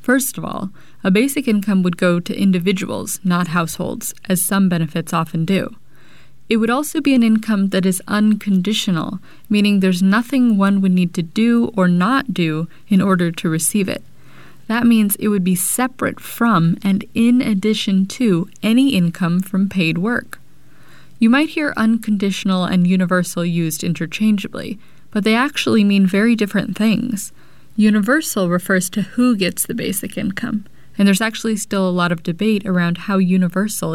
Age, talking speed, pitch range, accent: 30-49, 165 wpm, 180-225 Hz, American